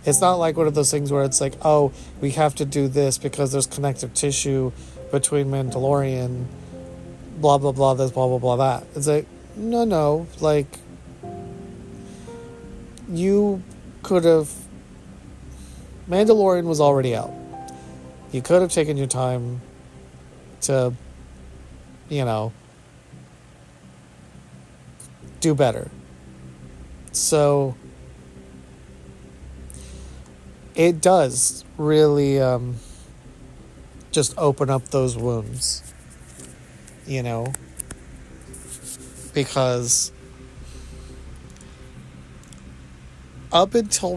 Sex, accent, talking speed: male, American, 90 wpm